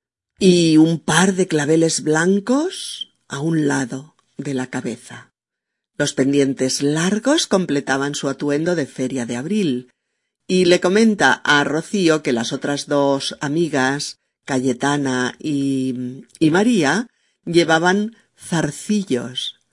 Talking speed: 115 wpm